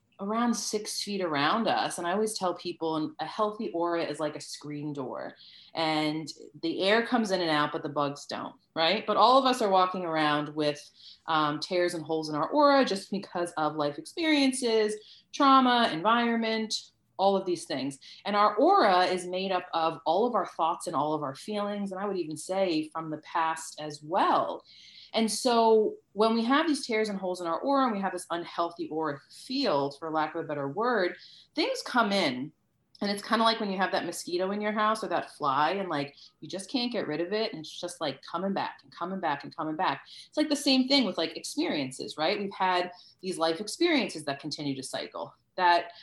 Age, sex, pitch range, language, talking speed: 30-49, female, 155-215 Hz, English, 215 wpm